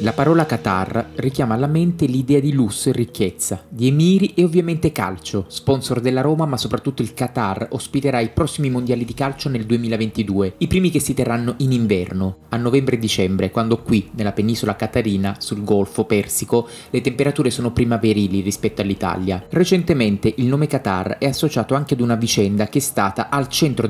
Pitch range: 105-140 Hz